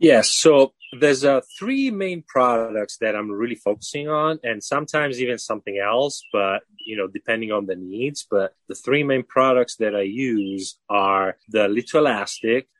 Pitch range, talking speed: 100-130 Hz, 170 wpm